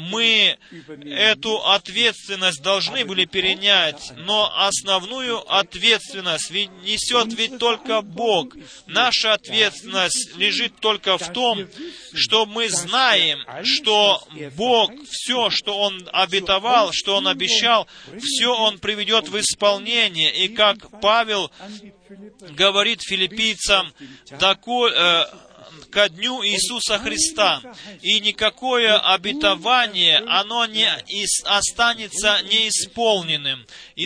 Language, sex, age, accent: Russian, male, 30-49, native